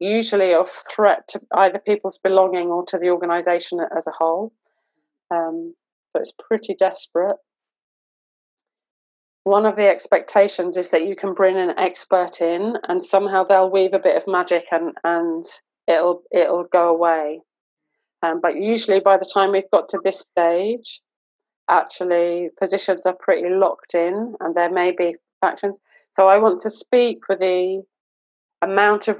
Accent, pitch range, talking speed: British, 175-195 Hz, 155 wpm